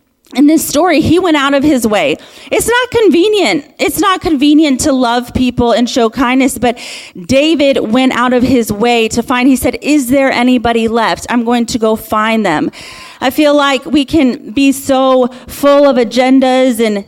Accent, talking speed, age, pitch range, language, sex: American, 185 wpm, 30-49, 240-295 Hz, English, female